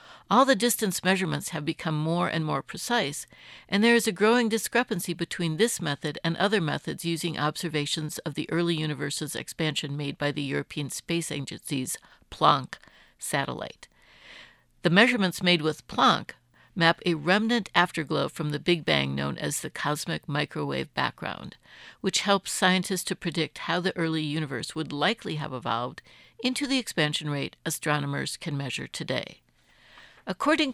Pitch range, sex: 155-195 Hz, female